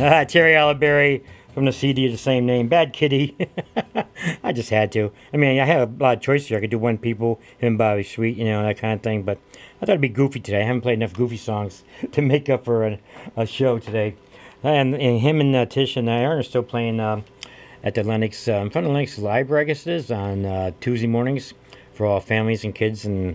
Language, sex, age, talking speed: English, male, 50-69, 245 wpm